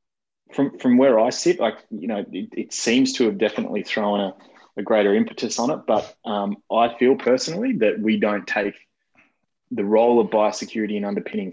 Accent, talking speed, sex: Australian, 185 wpm, male